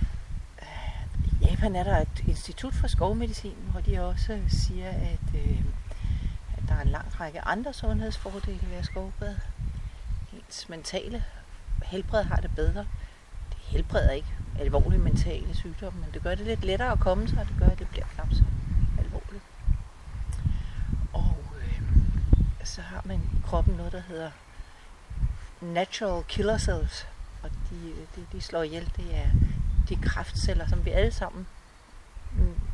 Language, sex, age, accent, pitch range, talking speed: English, female, 60-79, Danish, 80-100 Hz, 145 wpm